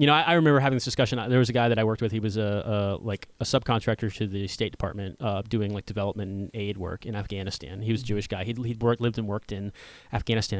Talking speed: 270 wpm